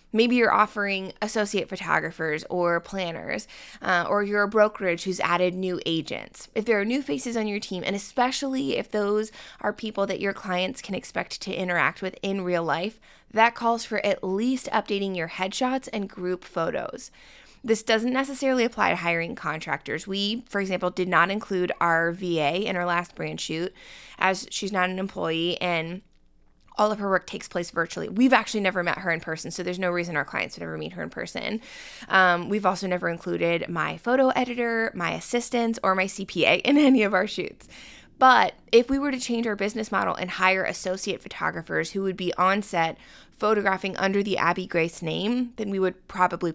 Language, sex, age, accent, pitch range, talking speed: English, female, 20-39, American, 175-215 Hz, 195 wpm